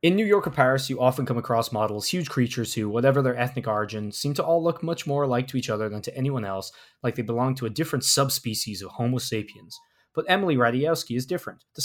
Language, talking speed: English, 240 wpm